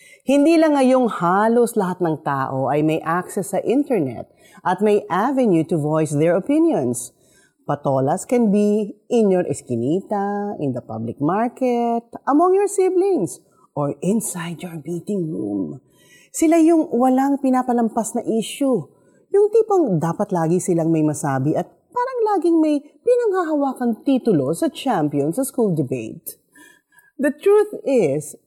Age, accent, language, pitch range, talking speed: 40-59, native, Filipino, 160-255 Hz, 135 wpm